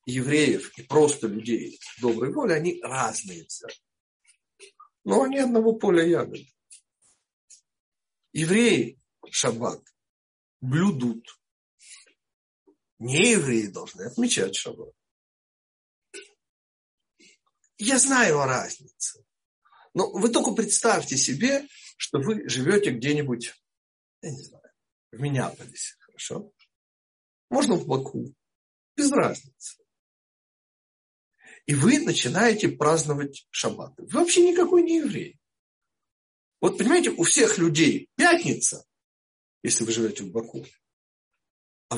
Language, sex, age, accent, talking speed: Russian, male, 60-79, native, 95 wpm